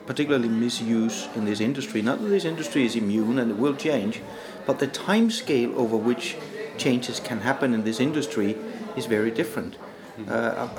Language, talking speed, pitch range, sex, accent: English, 170 wpm, 110-135 Hz, male, Danish